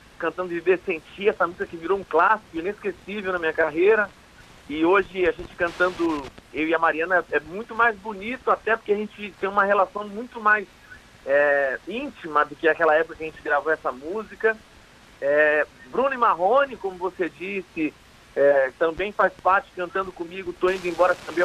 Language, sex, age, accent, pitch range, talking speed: Portuguese, male, 40-59, Brazilian, 165-215 Hz, 180 wpm